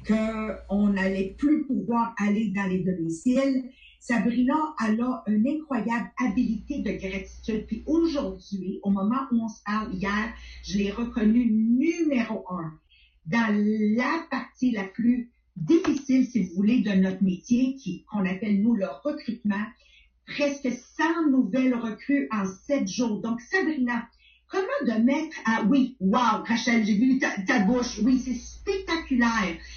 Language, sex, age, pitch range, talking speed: English, female, 50-69, 210-275 Hz, 145 wpm